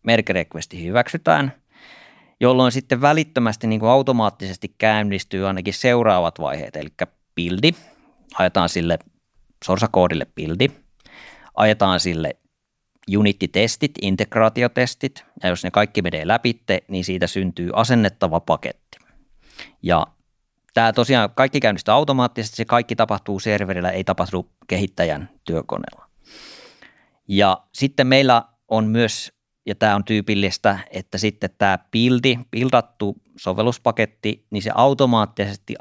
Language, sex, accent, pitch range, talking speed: Finnish, male, native, 95-115 Hz, 110 wpm